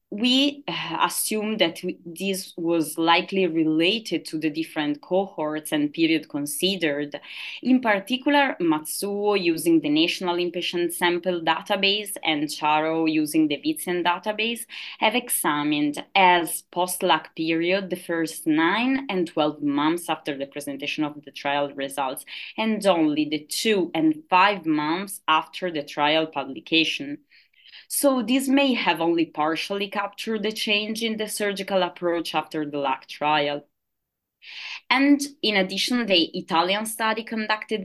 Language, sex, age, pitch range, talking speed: English, female, 20-39, 155-210 Hz, 130 wpm